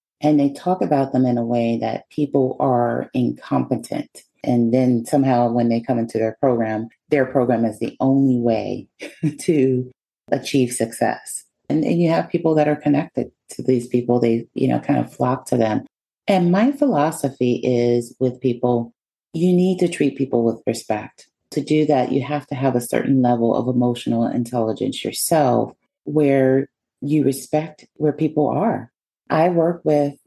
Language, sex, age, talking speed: English, female, 40-59, 170 wpm